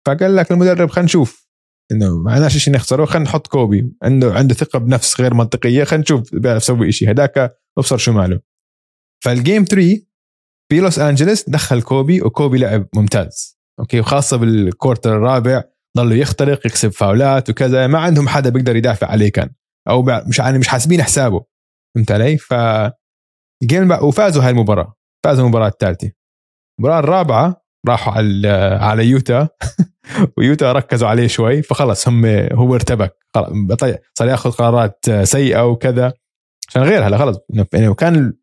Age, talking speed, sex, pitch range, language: 20-39, 145 wpm, male, 110-145 Hz, Arabic